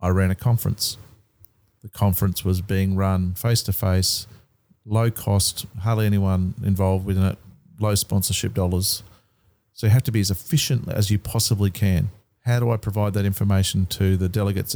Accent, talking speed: Australian, 165 wpm